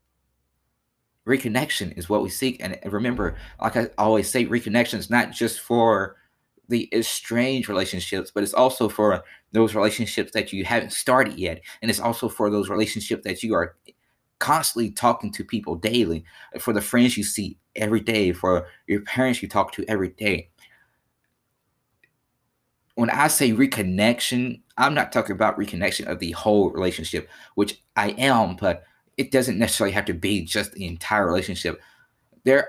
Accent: American